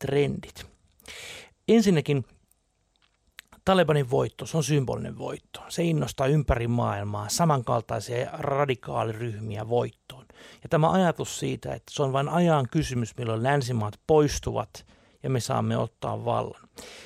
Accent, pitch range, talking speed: native, 125-165 Hz, 115 wpm